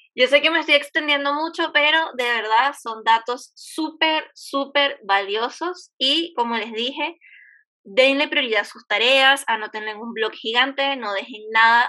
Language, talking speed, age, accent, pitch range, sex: Spanish, 160 wpm, 10-29, American, 230-295 Hz, female